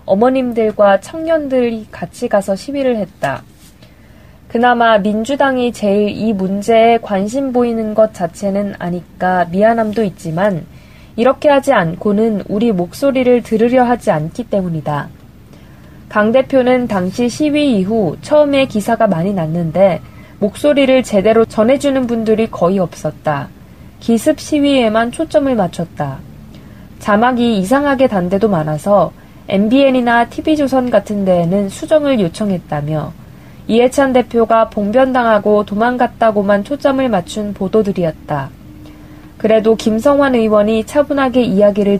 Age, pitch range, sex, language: 20-39, 195-255 Hz, female, Korean